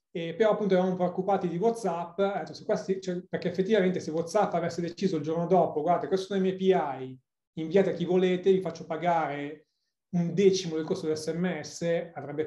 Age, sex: 30-49, male